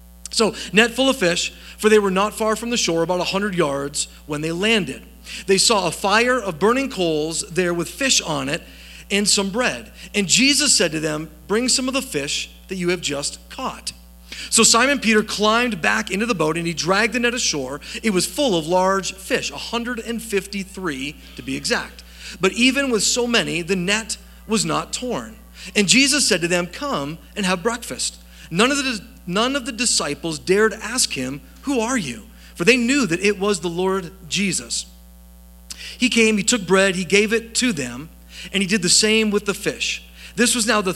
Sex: male